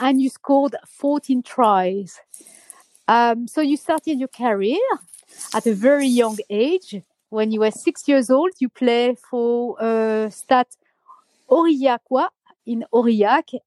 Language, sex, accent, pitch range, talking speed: English, female, French, 225-275 Hz, 130 wpm